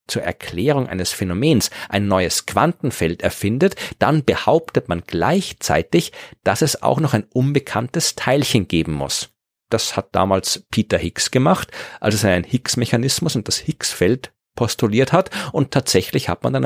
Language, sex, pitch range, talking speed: German, male, 95-130 Hz, 150 wpm